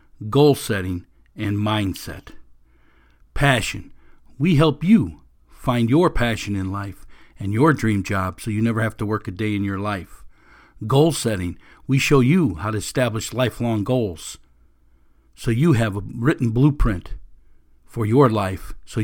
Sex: male